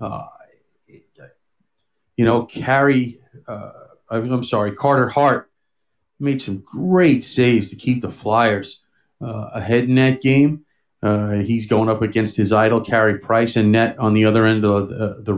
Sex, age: male, 40-59